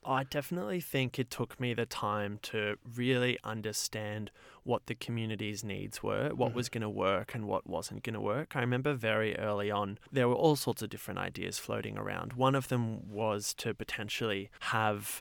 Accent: Australian